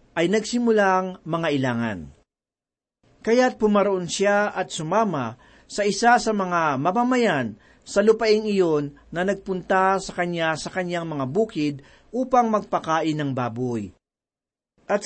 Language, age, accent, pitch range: Filipino, 40-59, native, 160-215 Hz